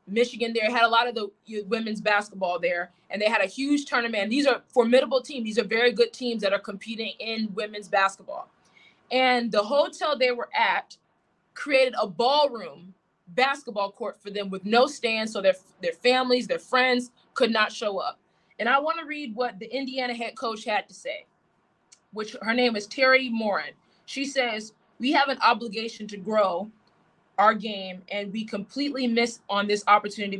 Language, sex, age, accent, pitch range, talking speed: English, female, 20-39, American, 205-250 Hz, 185 wpm